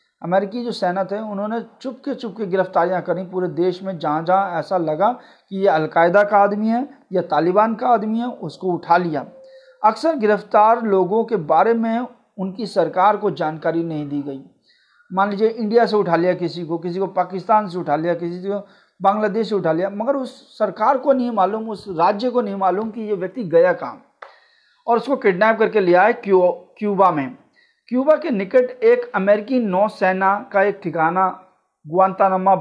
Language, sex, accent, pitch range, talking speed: Hindi, male, native, 175-225 Hz, 175 wpm